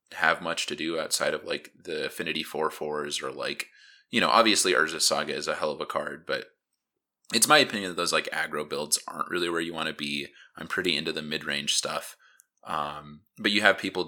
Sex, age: male, 20-39